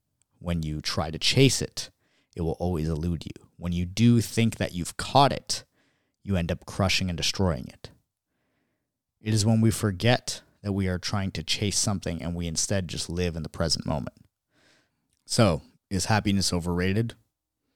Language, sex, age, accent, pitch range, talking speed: English, male, 30-49, American, 80-95 Hz, 170 wpm